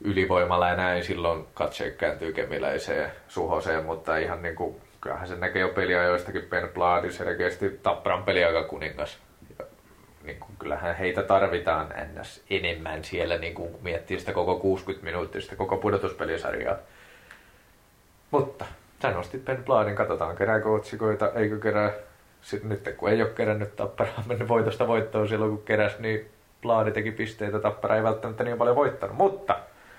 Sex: male